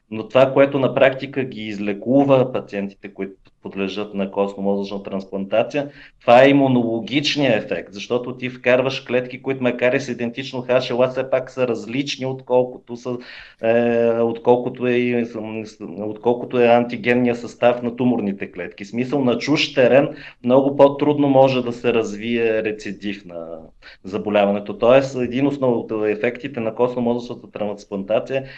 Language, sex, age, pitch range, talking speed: Bulgarian, male, 30-49, 110-135 Hz, 130 wpm